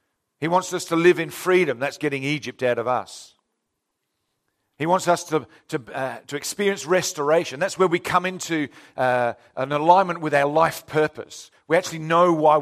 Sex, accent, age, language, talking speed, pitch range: male, British, 50-69, English, 170 wpm, 140-175 Hz